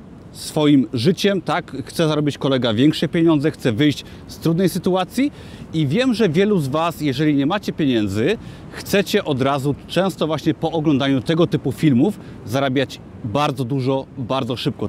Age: 30-49